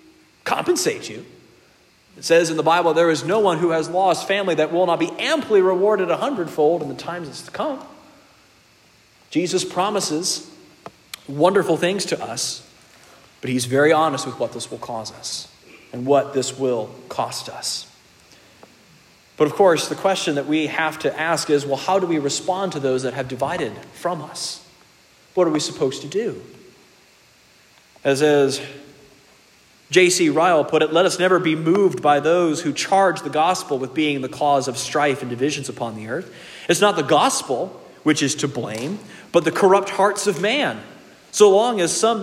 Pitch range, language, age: 145-190 Hz, English, 40-59